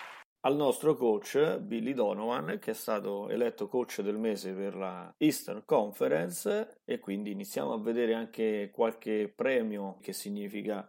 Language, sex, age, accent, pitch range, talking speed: Italian, male, 30-49, native, 100-120 Hz, 145 wpm